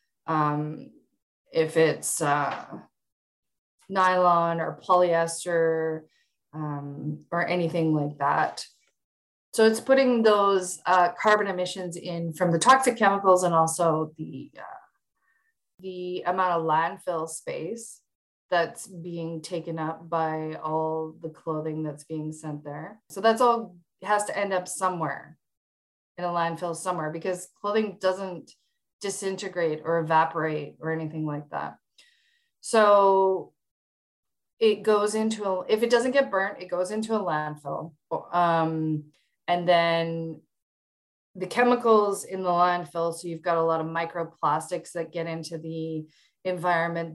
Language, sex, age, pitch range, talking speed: English, female, 20-39, 160-190 Hz, 130 wpm